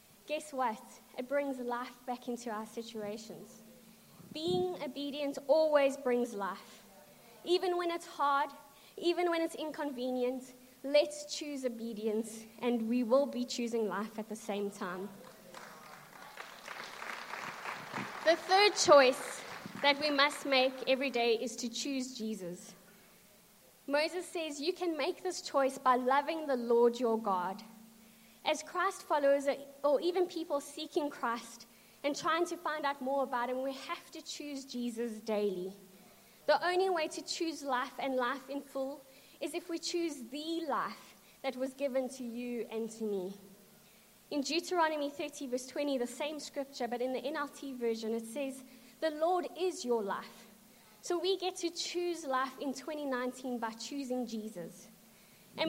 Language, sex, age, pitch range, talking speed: English, female, 20-39, 230-300 Hz, 150 wpm